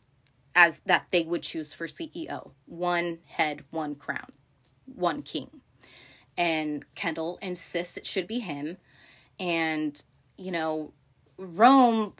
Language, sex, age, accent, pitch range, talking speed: English, female, 20-39, American, 160-190 Hz, 120 wpm